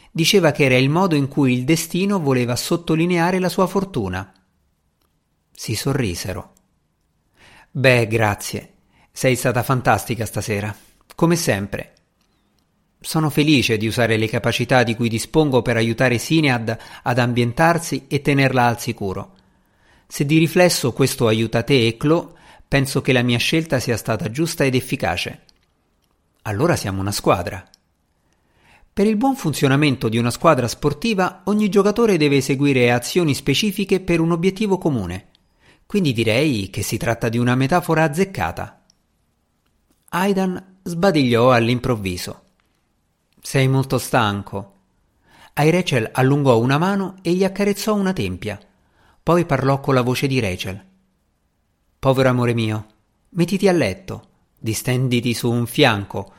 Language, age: Italian, 50-69